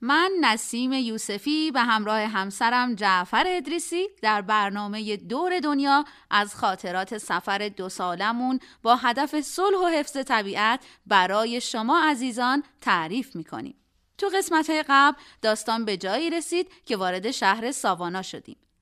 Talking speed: 130 wpm